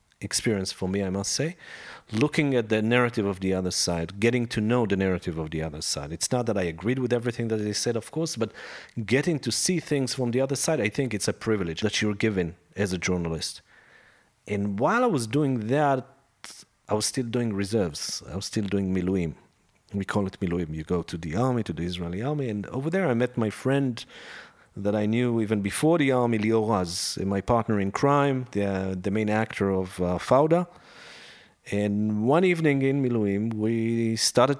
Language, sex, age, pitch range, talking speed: English, male, 40-59, 95-120 Hz, 205 wpm